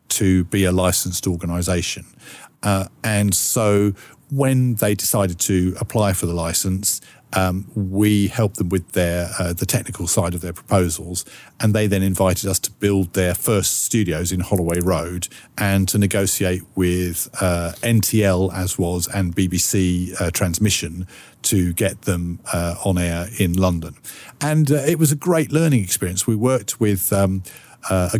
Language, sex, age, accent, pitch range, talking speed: English, male, 50-69, British, 90-110 Hz, 155 wpm